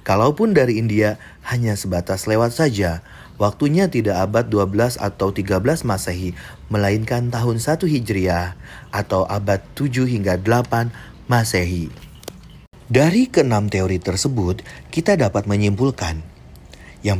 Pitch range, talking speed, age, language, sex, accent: 95-130 Hz, 110 wpm, 40-59, Indonesian, male, native